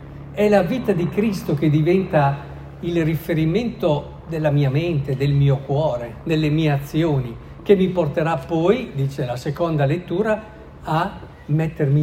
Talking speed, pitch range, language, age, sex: 140 wpm, 125-160 Hz, Italian, 50-69, male